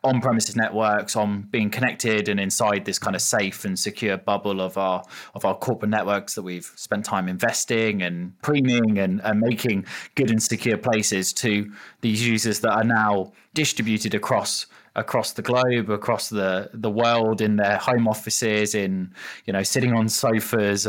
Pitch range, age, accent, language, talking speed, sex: 105-115 Hz, 20-39, British, English, 170 wpm, male